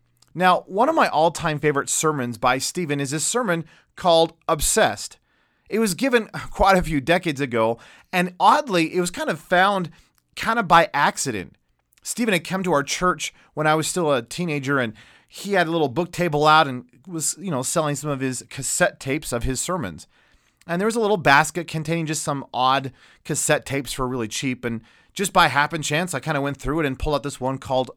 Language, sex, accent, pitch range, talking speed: English, male, American, 135-180 Hz, 210 wpm